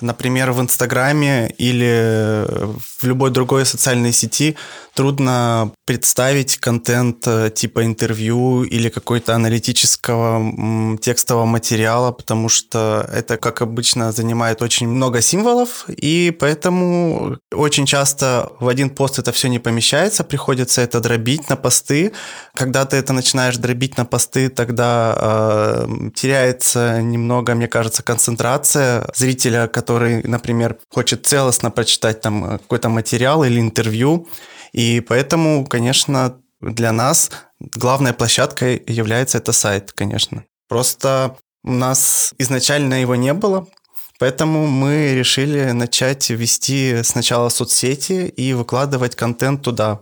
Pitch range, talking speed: 115-135 Hz, 120 wpm